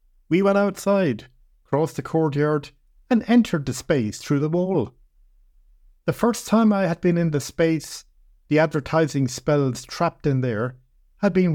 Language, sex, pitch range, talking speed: English, male, 110-165 Hz, 155 wpm